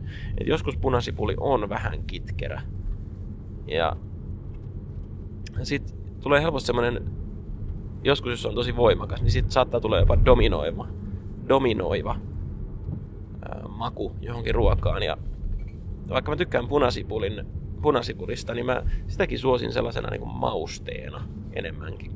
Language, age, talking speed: Finnish, 20-39, 110 wpm